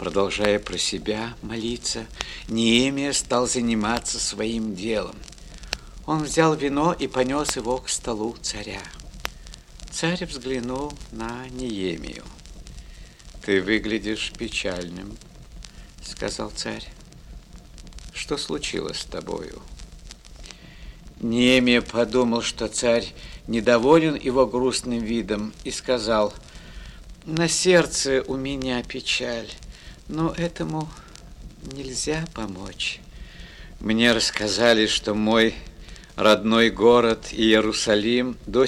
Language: Russian